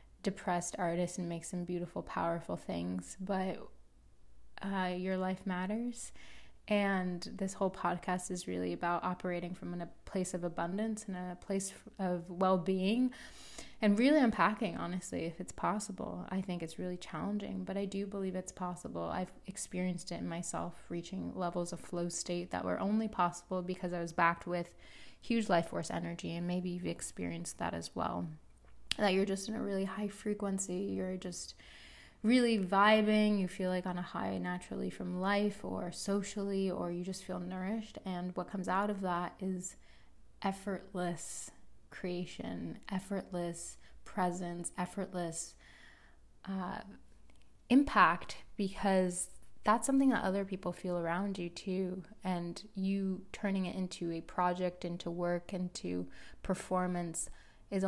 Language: English